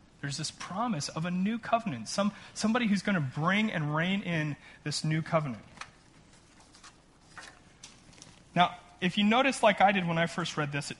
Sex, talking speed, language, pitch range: male, 175 wpm, English, 140-190 Hz